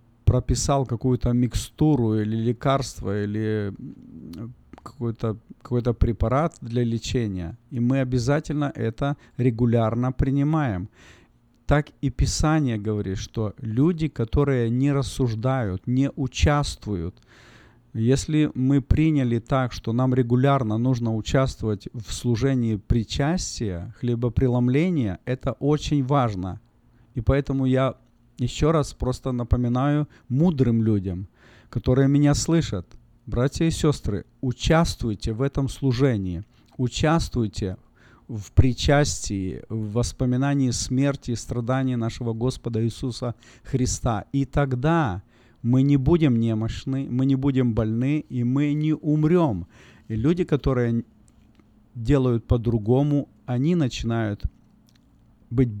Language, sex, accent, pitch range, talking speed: Russian, male, native, 110-135 Hz, 105 wpm